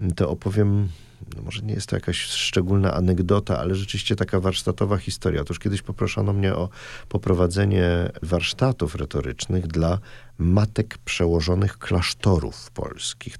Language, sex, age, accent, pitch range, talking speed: Polish, male, 40-59, native, 90-110 Hz, 125 wpm